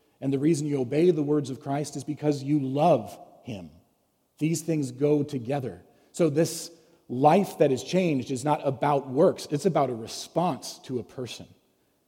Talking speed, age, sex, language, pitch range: 175 wpm, 40-59, male, English, 125-165 Hz